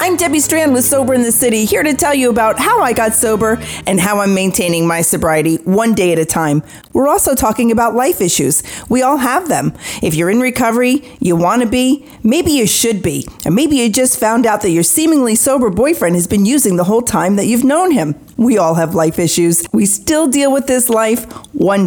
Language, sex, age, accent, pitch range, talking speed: English, female, 40-59, American, 180-245 Hz, 230 wpm